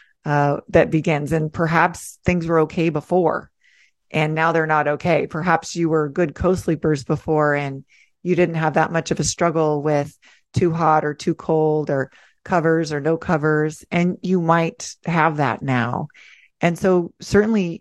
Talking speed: 165 wpm